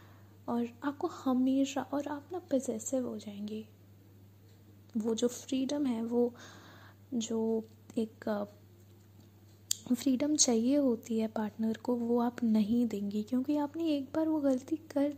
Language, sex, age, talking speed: Hindi, female, 20-39, 130 wpm